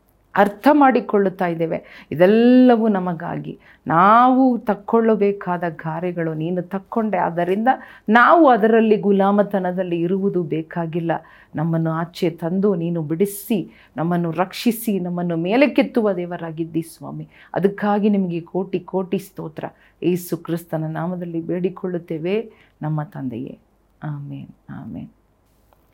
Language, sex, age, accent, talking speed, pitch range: Kannada, female, 40-59, native, 95 wpm, 165-200 Hz